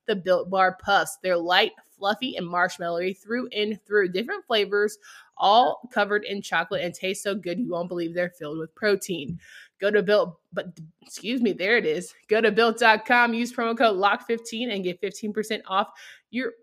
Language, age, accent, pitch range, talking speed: English, 20-39, American, 185-215 Hz, 180 wpm